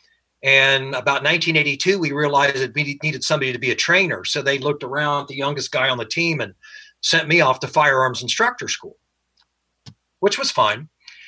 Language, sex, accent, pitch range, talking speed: English, male, American, 135-175 Hz, 180 wpm